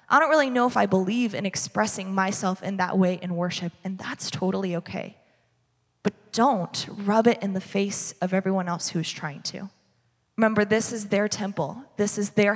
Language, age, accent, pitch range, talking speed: English, 20-39, American, 190-235 Hz, 195 wpm